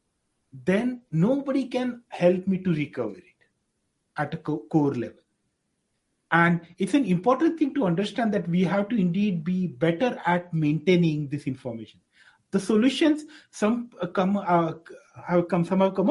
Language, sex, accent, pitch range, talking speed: English, male, Indian, 160-200 Hz, 155 wpm